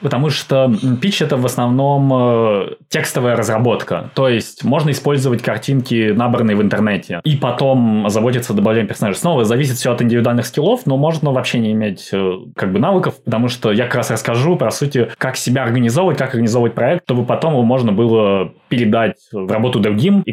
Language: Russian